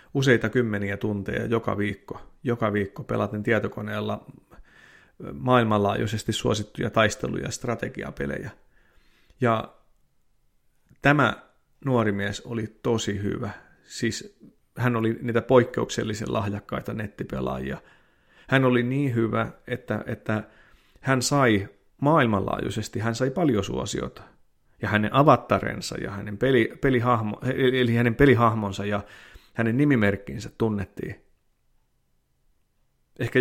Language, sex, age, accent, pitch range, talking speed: Finnish, male, 30-49, native, 105-125 Hz, 100 wpm